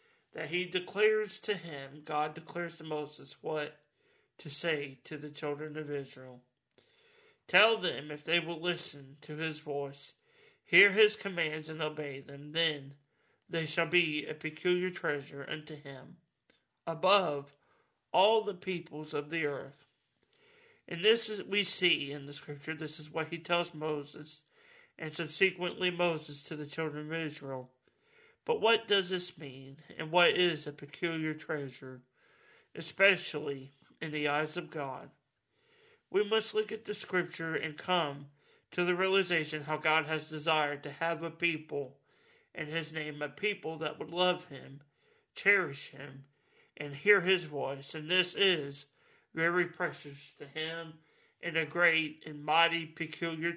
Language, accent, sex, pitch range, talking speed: English, American, male, 145-180 Hz, 150 wpm